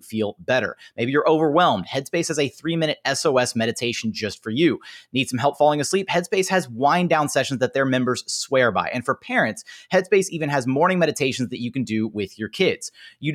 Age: 30-49